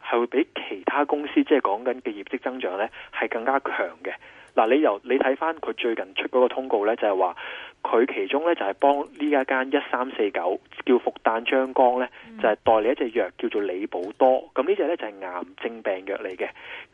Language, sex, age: Chinese, male, 20-39